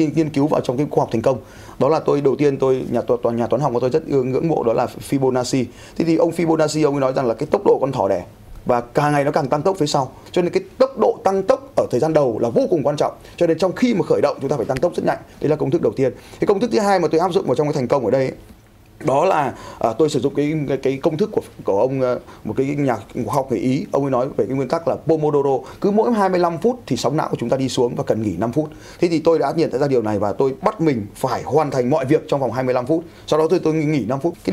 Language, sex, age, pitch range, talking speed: Vietnamese, male, 20-39, 120-165 Hz, 315 wpm